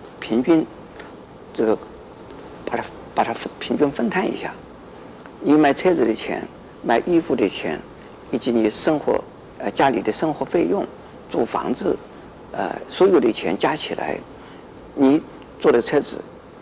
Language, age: Chinese, 50-69